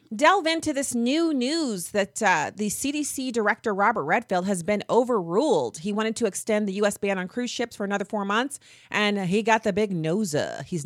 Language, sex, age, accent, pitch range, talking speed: English, female, 30-49, American, 170-235 Hz, 200 wpm